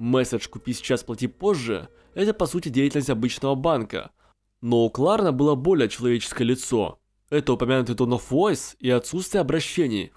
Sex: male